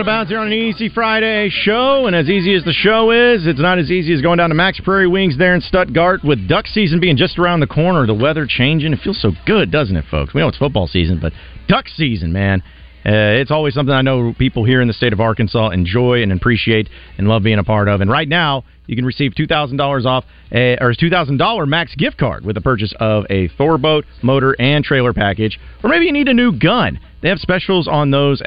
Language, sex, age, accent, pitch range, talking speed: English, male, 40-59, American, 110-160 Hz, 250 wpm